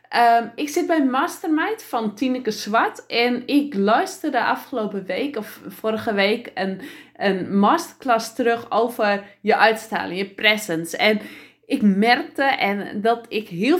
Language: English